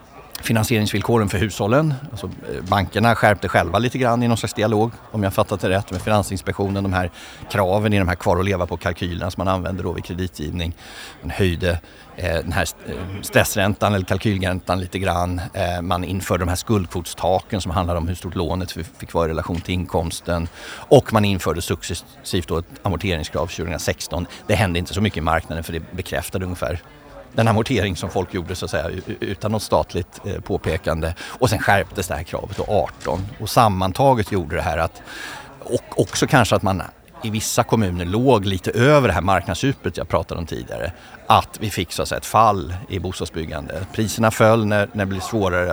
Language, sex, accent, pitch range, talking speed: Swedish, male, native, 90-110 Hz, 190 wpm